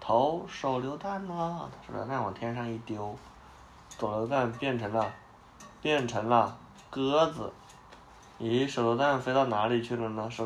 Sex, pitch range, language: male, 100-140 Hz, Chinese